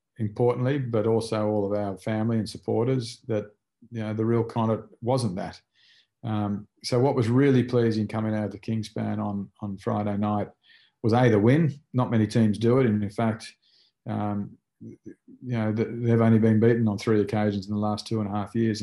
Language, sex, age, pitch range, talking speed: English, male, 40-59, 105-115 Hz, 200 wpm